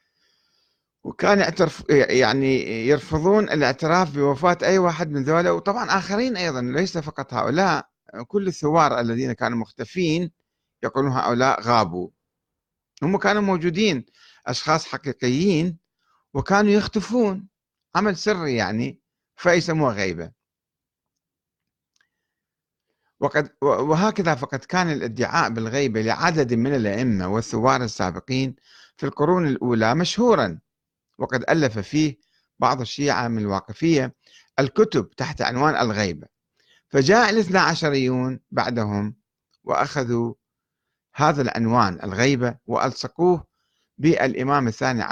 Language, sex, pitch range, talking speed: Arabic, male, 115-170 Hz, 95 wpm